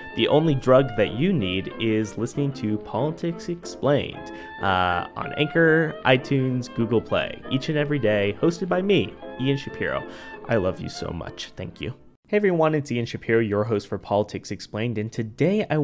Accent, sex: American, male